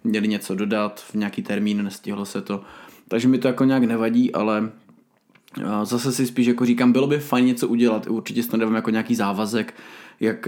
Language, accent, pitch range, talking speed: Czech, native, 115-145 Hz, 185 wpm